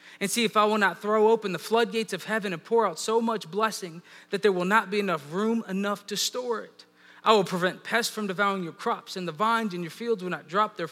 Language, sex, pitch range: English, male, 165-220 Hz